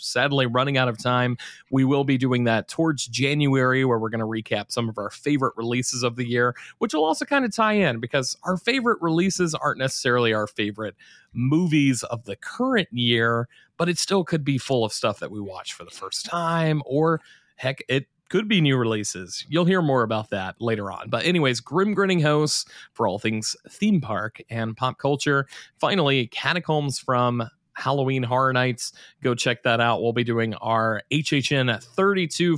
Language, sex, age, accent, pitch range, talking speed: English, male, 30-49, American, 120-165 Hz, 190 wpm